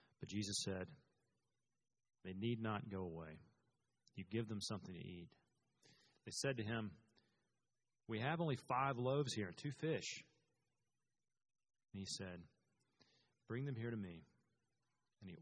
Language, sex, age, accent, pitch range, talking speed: English, male, 40-59, American, 95-125 Hz, 145 wpm